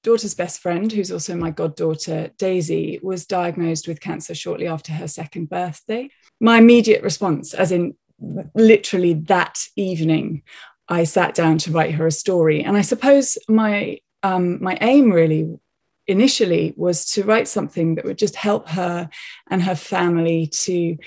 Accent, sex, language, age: British, female, English, 20-39